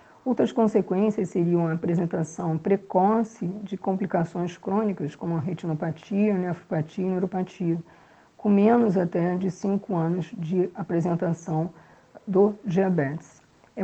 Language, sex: Portuguese, female